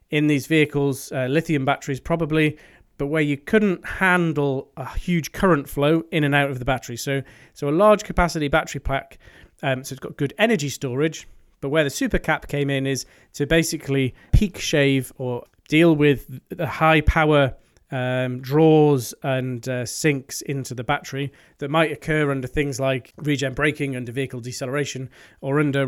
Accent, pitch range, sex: British, 135-160 Hz, male